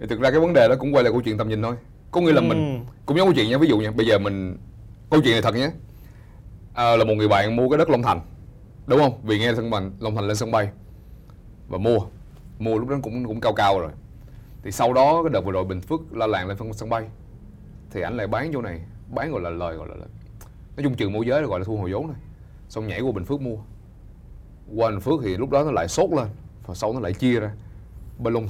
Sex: male